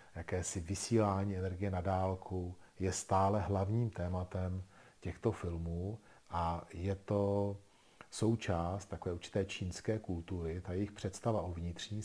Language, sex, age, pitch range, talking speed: Czech, male, 40-59, 85-105 Hz, 120 wpm